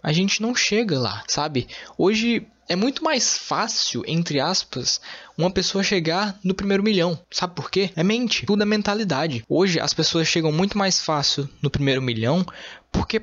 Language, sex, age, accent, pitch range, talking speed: Portuguese, male, 10-29, Brazilian, 145-215 Hz, 170 wpm